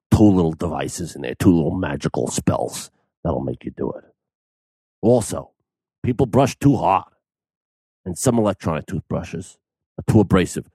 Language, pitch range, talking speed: English, 85-115 Hz, 145 wpm